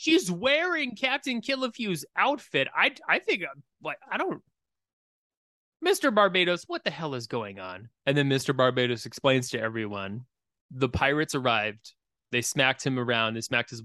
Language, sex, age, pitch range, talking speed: English, male, 20-39, 120-170 Hz, 150 wpm